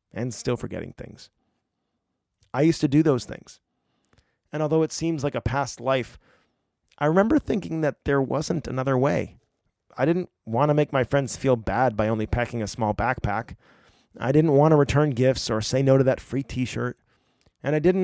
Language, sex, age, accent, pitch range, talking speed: English, male, 30-49, American, 105-140 Hz, 190 wpm